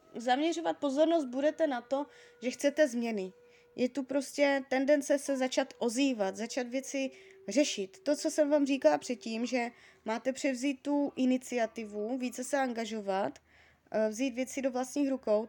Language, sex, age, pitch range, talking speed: Czech, female, 20-39, 220-285 Hz, 145 wpm